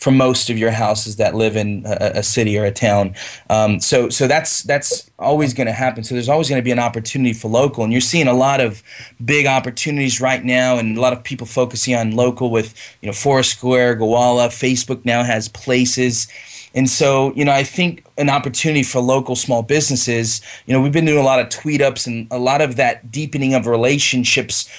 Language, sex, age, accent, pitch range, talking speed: English, male, 20-39, American, 115-135 Hz, 215 wpm